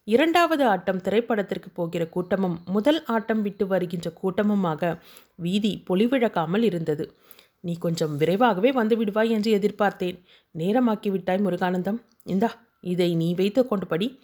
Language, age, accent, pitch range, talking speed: Tamil, 30-49, native, 175-230 Hz, 105 wpm